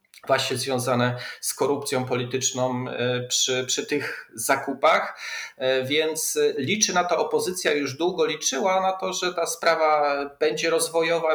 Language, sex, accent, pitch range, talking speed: Polish, male, native, 125-150 Hz, 125 wpm